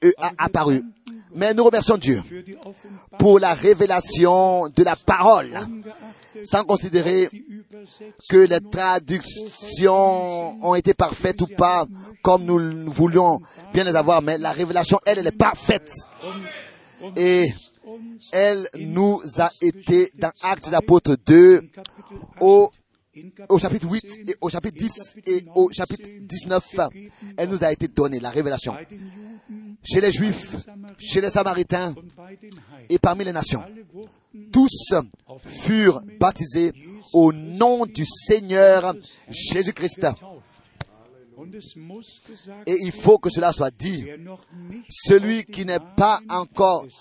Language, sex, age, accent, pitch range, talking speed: French, male, 40-59, French, 170-205 Hz, 120 wpm